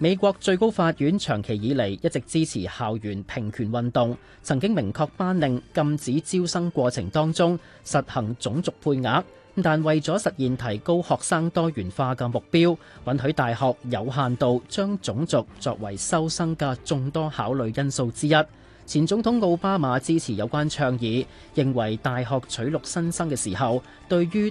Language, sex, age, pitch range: Chinese, male, 30-49, 120-165 Hz